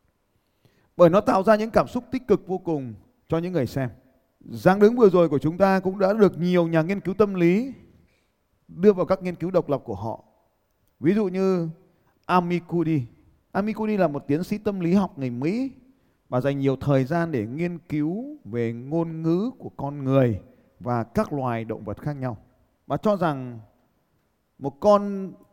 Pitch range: 125-190 Hz